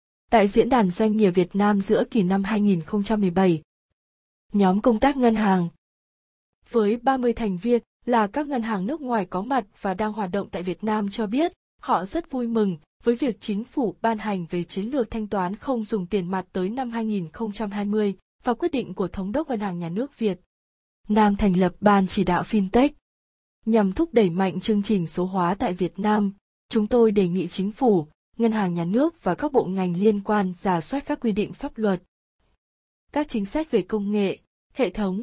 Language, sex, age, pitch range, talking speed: Vietnamese, female, 20-39, 190-230 Hz, 205 wpm